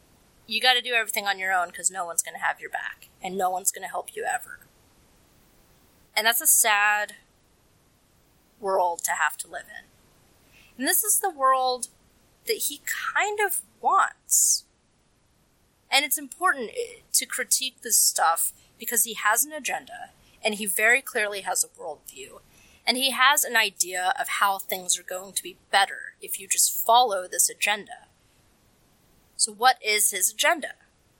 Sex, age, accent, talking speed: female, 20-39, American, 165 wpm